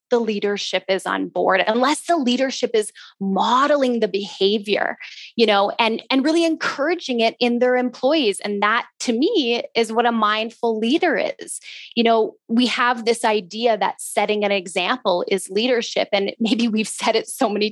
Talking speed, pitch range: 175 wpm, 205-265 Hz